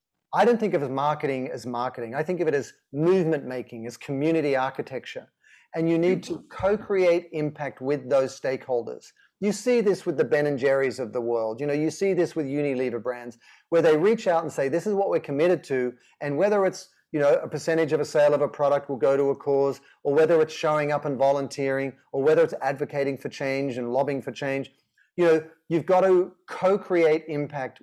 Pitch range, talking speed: 135-170 Hz, 215 wpm